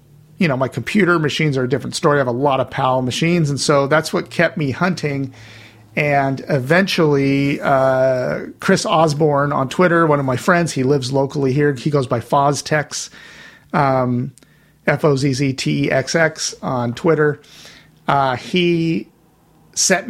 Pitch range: 130-155 Hz